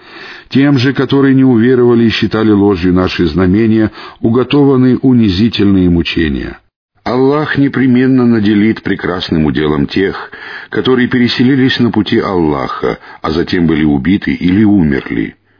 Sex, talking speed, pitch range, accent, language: male, 115 wpm, 95-125 Hz, native, Russian